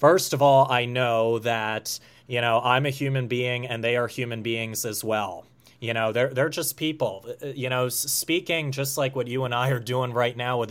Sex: male